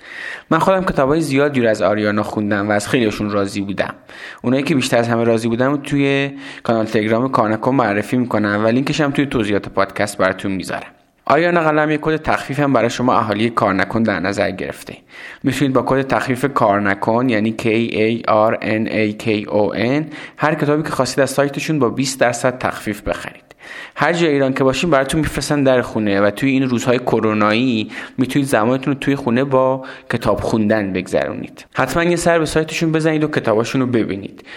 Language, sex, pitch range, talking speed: Persian, male, 105-140 Hz, 185 wpm